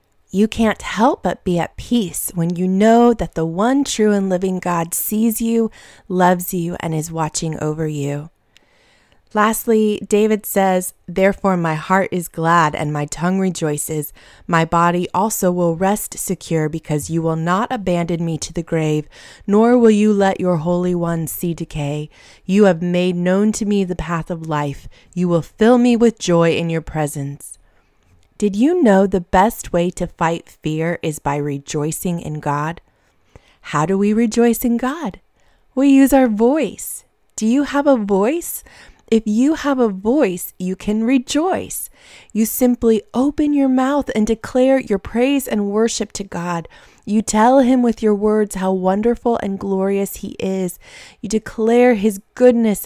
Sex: female